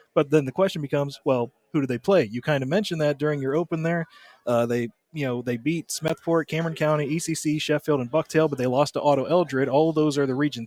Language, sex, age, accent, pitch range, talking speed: English, male, 30-49, American, 130-160 Hz, 245 wpm